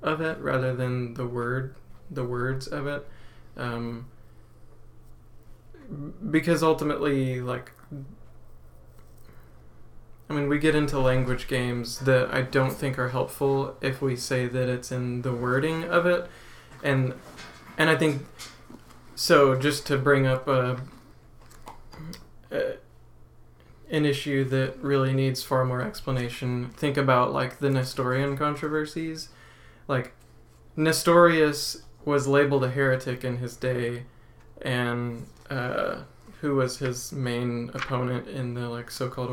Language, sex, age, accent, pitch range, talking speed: English, male, 20-39, American, 120-140 Hz, 125 wpm